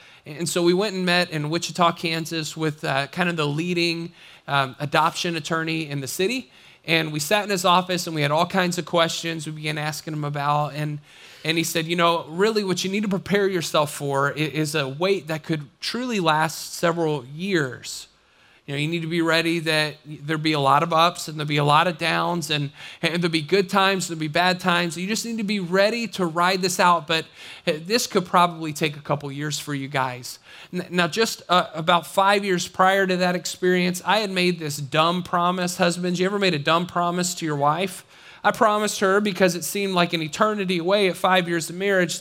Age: 30-49